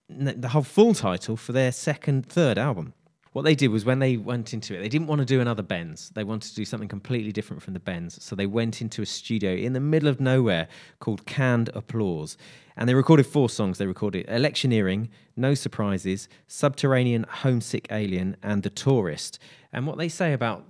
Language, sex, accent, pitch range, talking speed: English, male, British, 105-135 Hz, 205 wpm